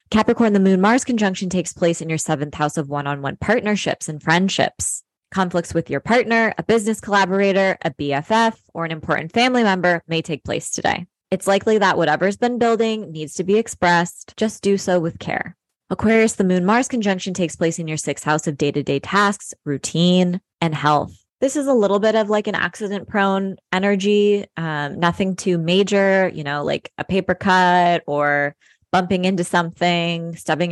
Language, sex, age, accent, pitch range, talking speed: English, female, 20-39, American, 160-205 Hz, 180 wpm